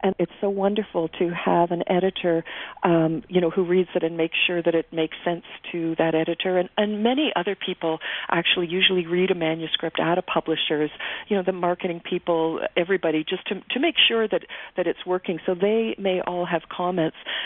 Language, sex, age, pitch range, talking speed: English, female, 40-59, 180-230 Hz, 200 wpm